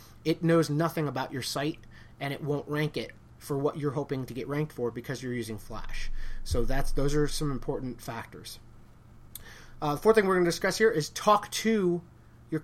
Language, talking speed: English, 205 wpm